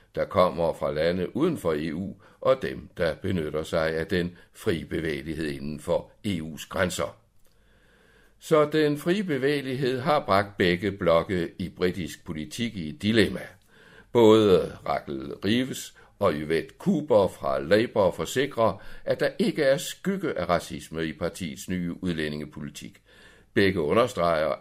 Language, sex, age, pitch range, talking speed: Danish, male, 60-79, 90-115 Hz, 135 wpm